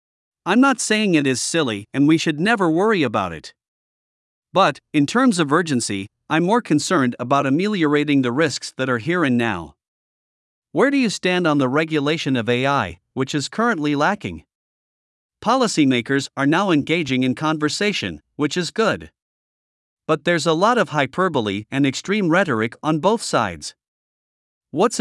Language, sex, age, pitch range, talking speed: Vietnamese, male, 50-69, 130-170 Hz, 155 wpm